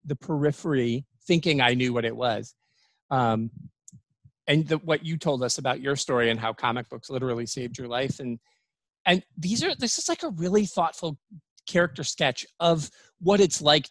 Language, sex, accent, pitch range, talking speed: English, male, American, 130-175 Hz, 180 wpm